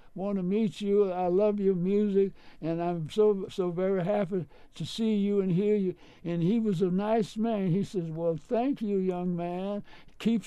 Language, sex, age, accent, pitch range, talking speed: English, male, 60-79, American, 175-215 Hz, 195 wpm